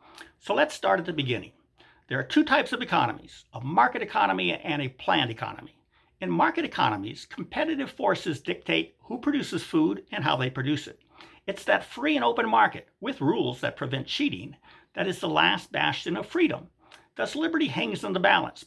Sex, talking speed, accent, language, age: male, 185 wpm, American, English, 50-69